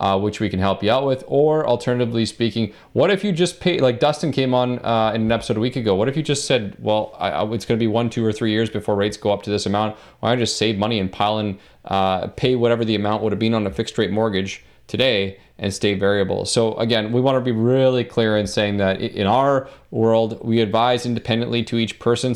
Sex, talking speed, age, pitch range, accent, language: male, 260 wpm, 30-49, 105-120 Hz, American, English